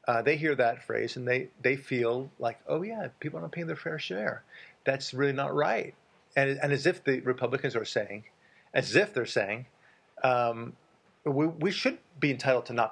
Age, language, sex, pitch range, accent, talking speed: 40-59, English, male, 120-155 Hz, American, 200 wpm